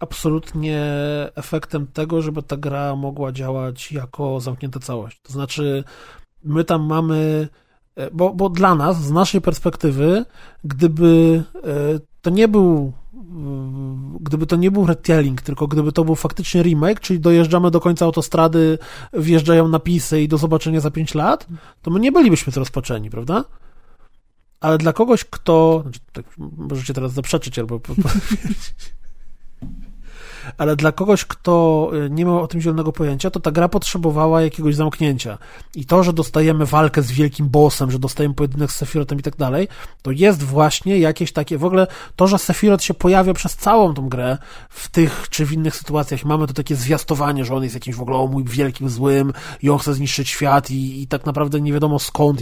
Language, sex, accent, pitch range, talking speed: Polish, male, native, 140-170 Hz, 170 wpm